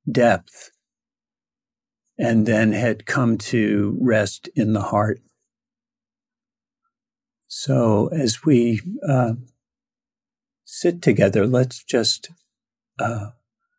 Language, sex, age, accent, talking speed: English, male, 50-69, American, 85 wpm